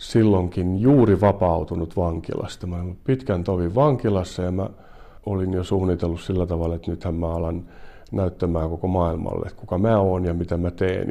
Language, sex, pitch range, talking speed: Finnish, male, 85-105 Hz, 165 wpm